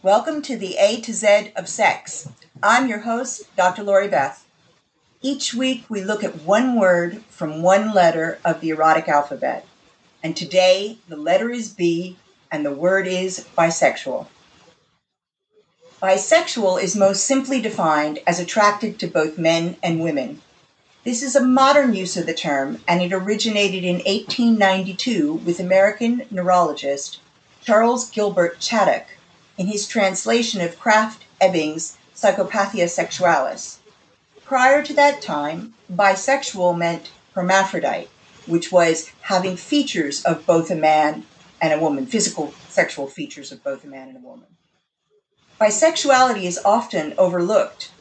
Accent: American